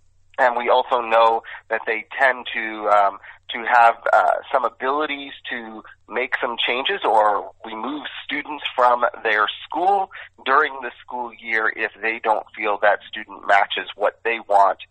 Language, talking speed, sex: English, 155 wpm, male